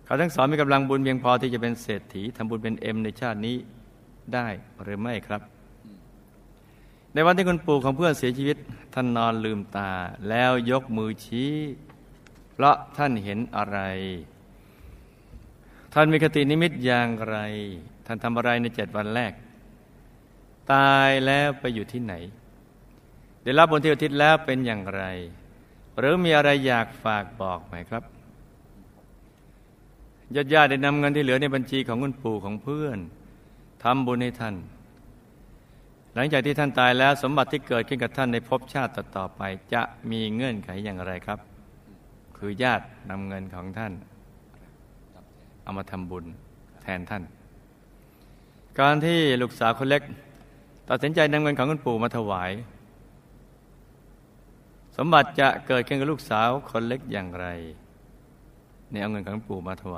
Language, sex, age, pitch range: Thai, male, 60-79, 100-135 Hz